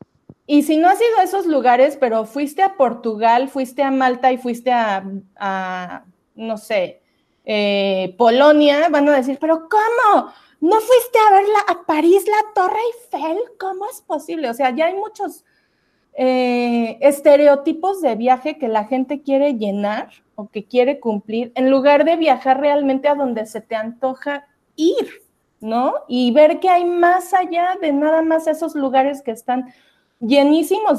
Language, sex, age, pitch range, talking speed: Spanish, female, 30-49, 240-320 Hz, 165 wpm